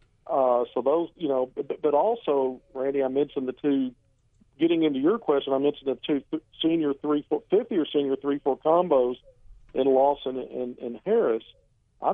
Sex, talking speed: male, 185 wpm